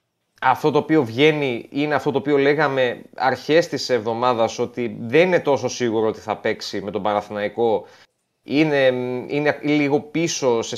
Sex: male